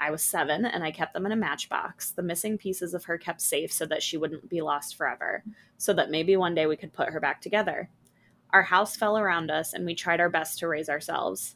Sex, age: female, 20-39